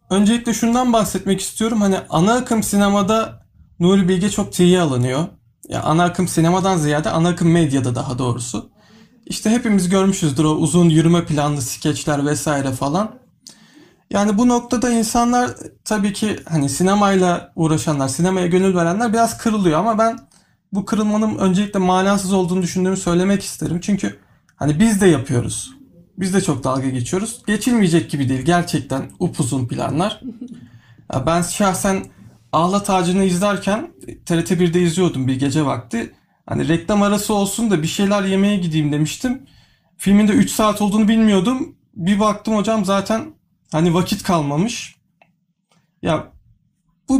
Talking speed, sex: 140 wpm, male